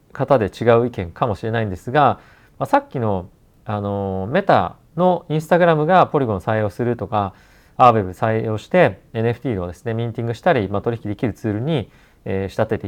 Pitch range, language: 110-160 Hz, Japanese